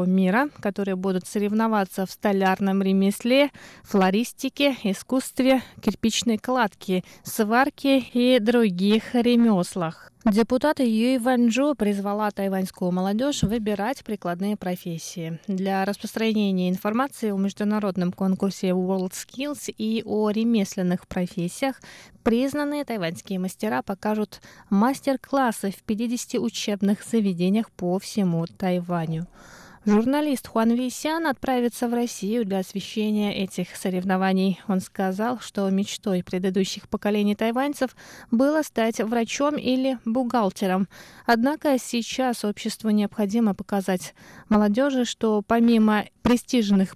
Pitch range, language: 190-240 Hz, Russian